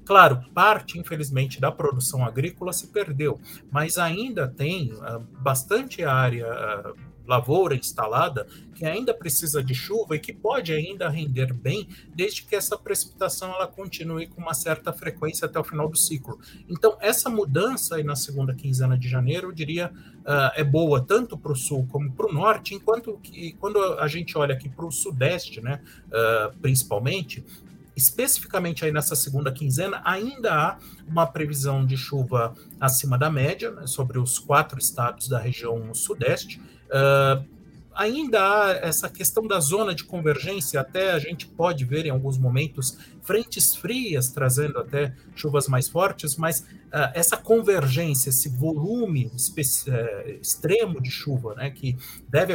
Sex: male